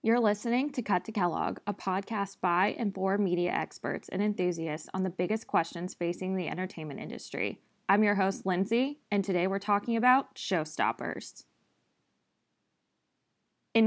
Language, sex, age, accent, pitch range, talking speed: English, female, 20-39, American, 185-215 Hz, 145 wpm